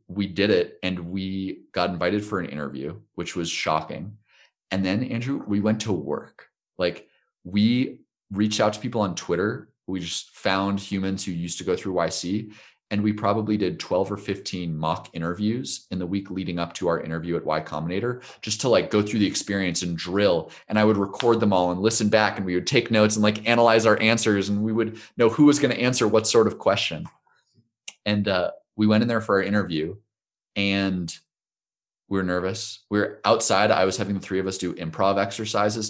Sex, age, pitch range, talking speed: male, 30-49, 90-110 Hz, 210 wpm